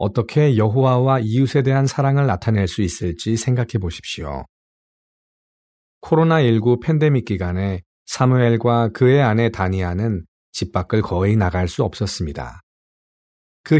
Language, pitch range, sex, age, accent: Korean, 90-125 Hz, male, 40-59, native